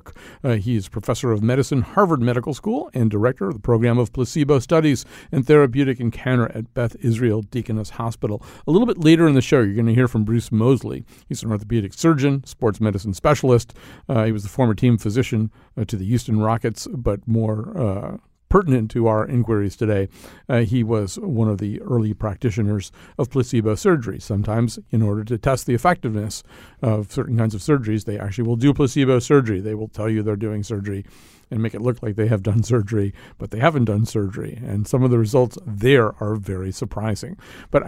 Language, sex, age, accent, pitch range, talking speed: English, male, 50-69, American, 110-135 Hz, 200 wpm